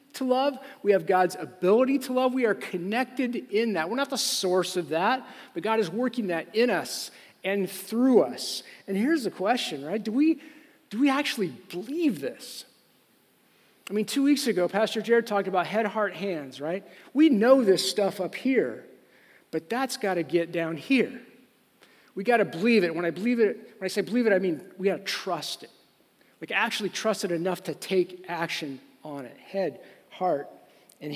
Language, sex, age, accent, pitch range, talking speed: English, male, 40-59, American, 180-230 Hz, 195 wpm